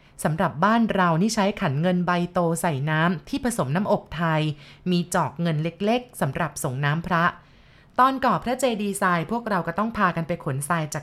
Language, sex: Thai, female